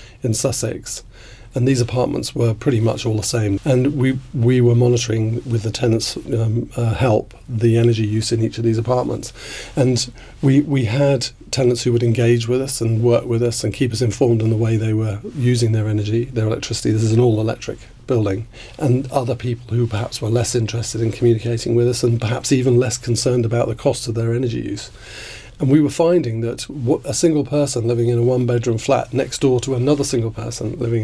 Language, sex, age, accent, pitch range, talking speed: English, male, 40-59, British, 115-130 Hz, 205 wpm